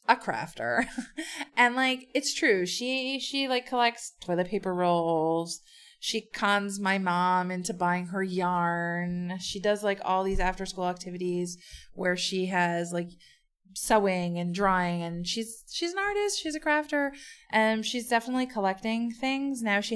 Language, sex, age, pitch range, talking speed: English, female, 20-39, 175-245 Hz, 155 wpm